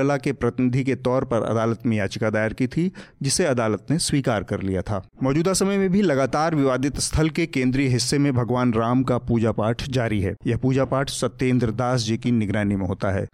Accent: native